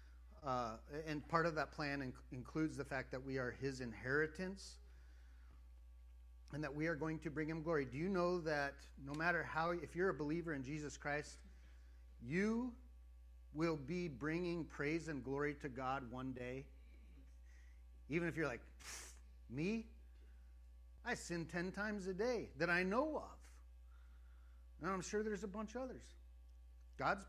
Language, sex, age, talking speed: English, male, 40-59, 160 wpm